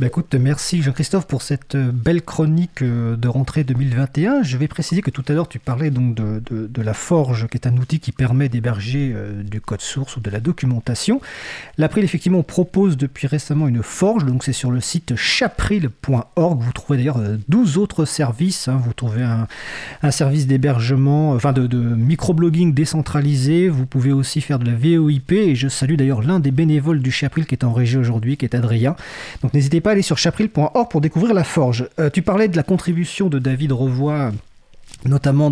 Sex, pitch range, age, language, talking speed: male, 130-170 Hz, 40-59, French, 195 wpm